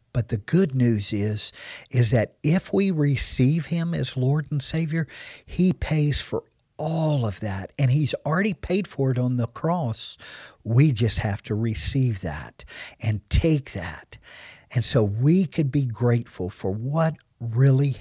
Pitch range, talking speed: 110-155 Hz, 160 wpm